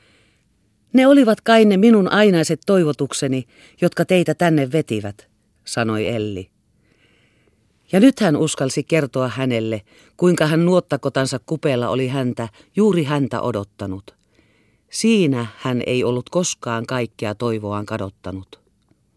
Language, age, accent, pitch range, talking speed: Finnish, 40-59, native, 110-160 Hz, 110 wpm